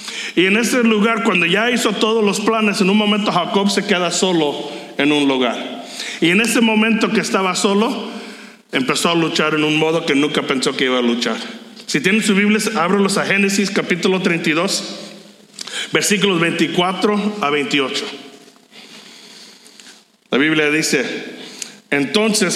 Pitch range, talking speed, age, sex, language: 165-220 Hz, 150 wpm, 50-69, male, English